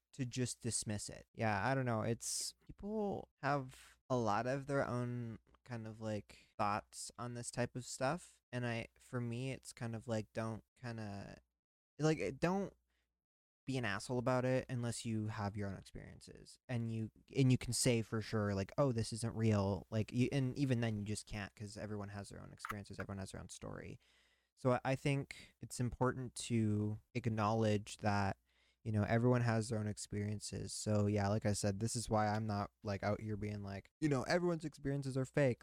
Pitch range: 105-125 Hz